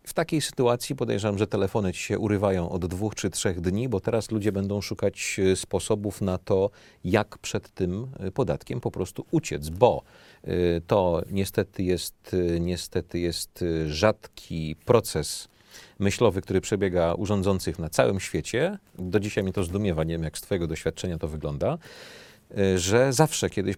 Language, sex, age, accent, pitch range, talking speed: Polish, male, 40-59, native, 95-120 Hz, 150 wpm